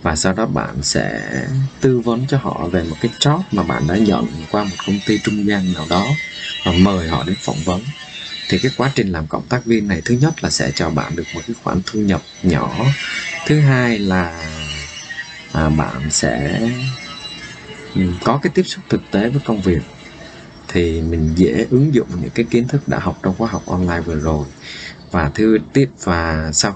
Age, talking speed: 20-39, 195 wpm